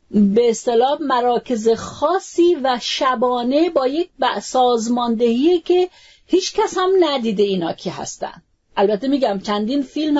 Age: 40-59